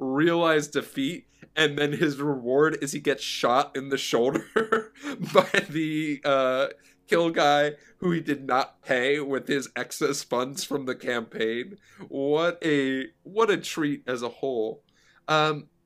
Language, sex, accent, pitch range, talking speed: English, male, American, 115-160 Hz, 150 wpm